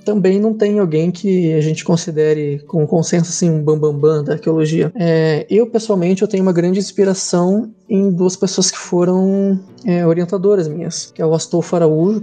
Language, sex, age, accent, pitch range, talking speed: Portuguese, male, 20-39, Brazilian, 160-185 Hz, 190 wpm